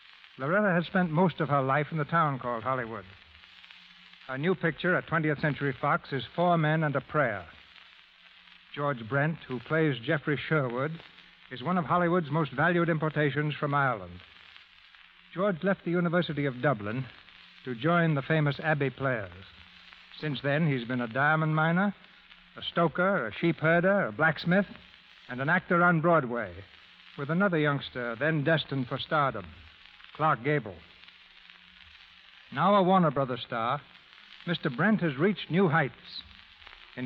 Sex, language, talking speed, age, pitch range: male, English, 145 wpm, 60-79, 130-170 Hz